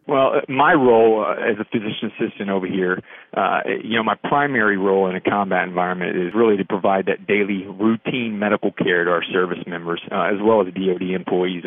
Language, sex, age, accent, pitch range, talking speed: English, male, 40-59, American, 95-105 Hz, 200 wpm